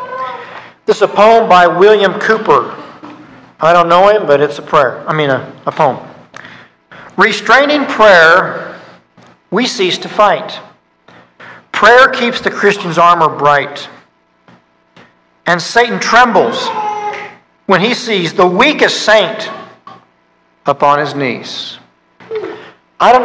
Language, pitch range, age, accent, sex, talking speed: English, 145-205 Hz, 50-69, American, male, 120 wpm